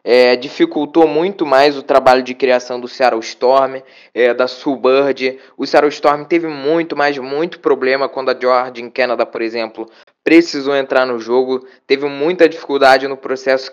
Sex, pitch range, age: male, 130-160 Hz, 20-39